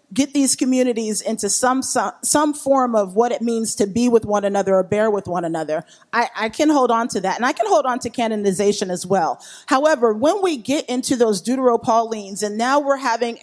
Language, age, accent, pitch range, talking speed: English, 30-49, American, 225-305 Hz, 220 wpm